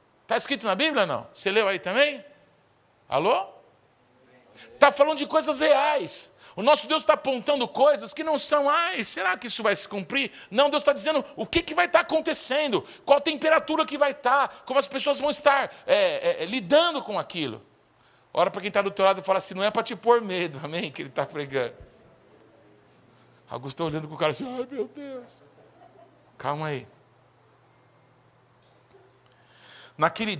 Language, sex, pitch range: Portuguese, male, 175-260 Hz